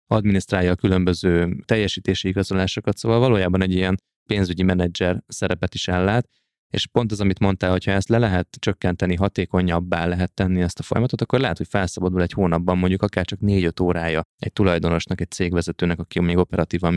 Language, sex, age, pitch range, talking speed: Hungarian, male, 20-39, 85-100 Hz, 175 wpm